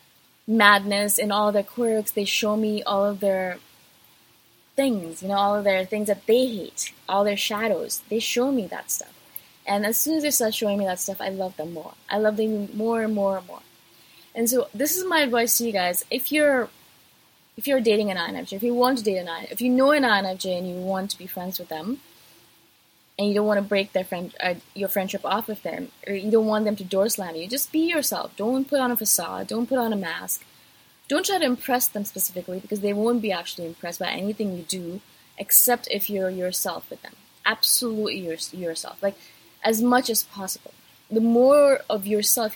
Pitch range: 190-235 Hz